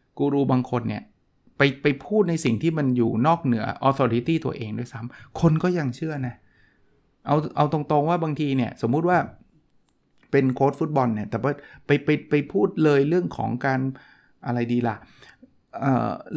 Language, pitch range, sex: Thai, 115-145 Hz, male